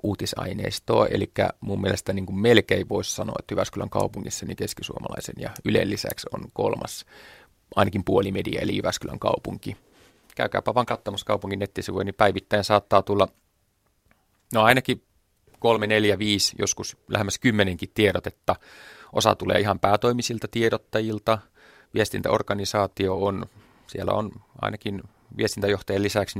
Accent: native